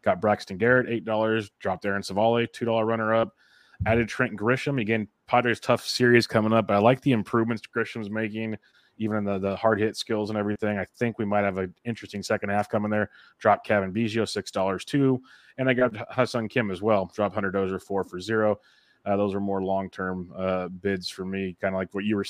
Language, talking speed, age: English, 205 wpm, 30-49